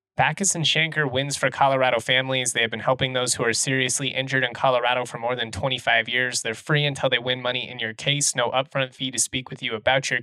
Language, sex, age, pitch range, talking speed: English, male, 20-39, 120-145 Hz, 240 wpm